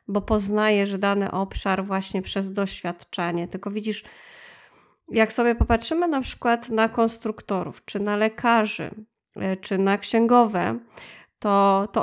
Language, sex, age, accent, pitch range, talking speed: Polish, female, 20-39, native, 195-215 Hz, 120 wpm